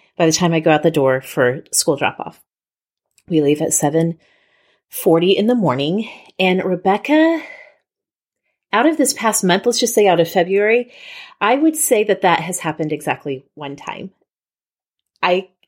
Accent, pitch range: American, 165-255 Hz